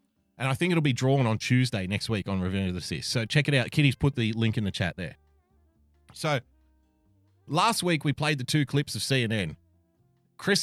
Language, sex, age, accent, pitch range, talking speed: English, male, 30-49, Australian, 95-140 Hz, 215 wpm